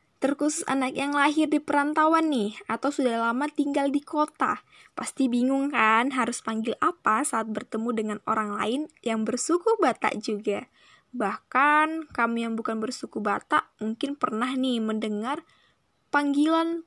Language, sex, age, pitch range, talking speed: Indonesian, female, 20-39, 225-315 Hz, 140 wpm